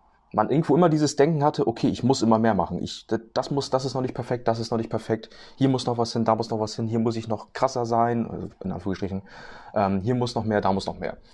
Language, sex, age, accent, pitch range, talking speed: German, male, 30-49, German, 105-135 Hz, 265 wpm